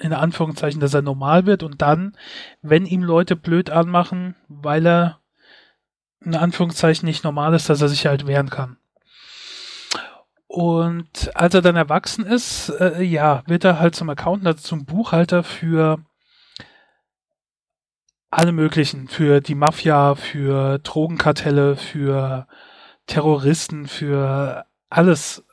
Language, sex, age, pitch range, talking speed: German, male, 30-49, 145-170 Hz, 125 wpm